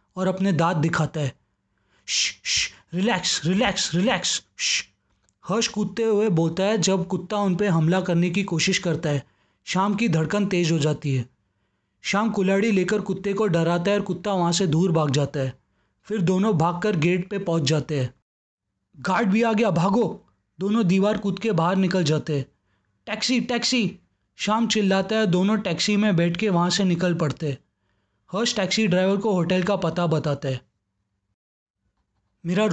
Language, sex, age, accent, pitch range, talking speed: Hindi, male, 20-39, native, 150-205 Hz, 165 wpm